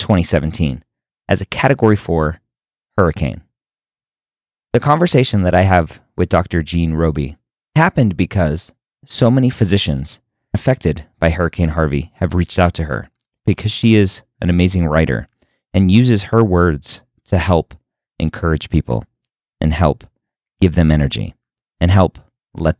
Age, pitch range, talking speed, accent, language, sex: 30-49, 80-110 Hz, 135 wpm, American, English, male